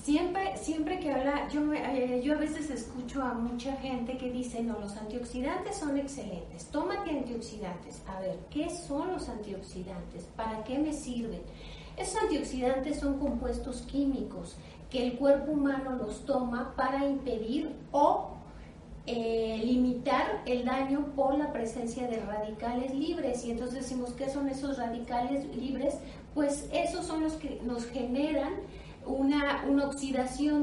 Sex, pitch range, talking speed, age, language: female, 245-290 Hz, 145 wpm, 40-59, Spanish